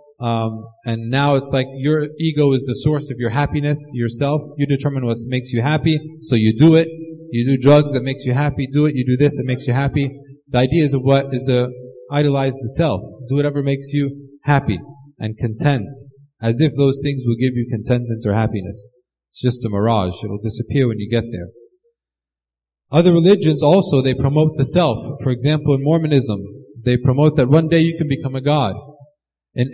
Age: 30-49